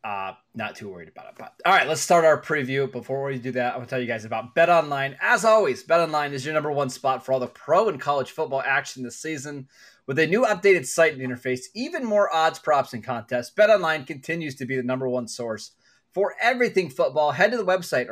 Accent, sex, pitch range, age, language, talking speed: American, male, 125-165 Hz, 20-39, English, 240 wpm